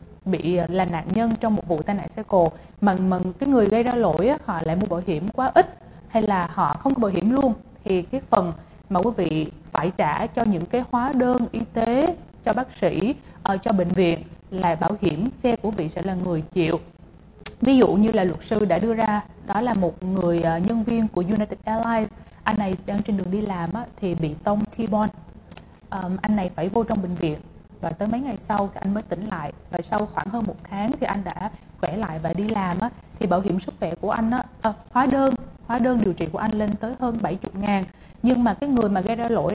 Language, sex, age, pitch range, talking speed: English, female, 20-39, 175-230 Hz, 230 wpm